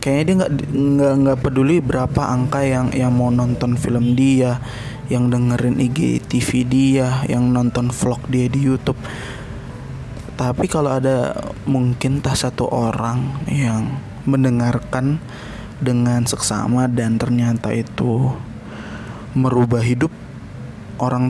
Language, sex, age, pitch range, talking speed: Indonesian, male, 20-39, 120-135 Hz, 115 wpm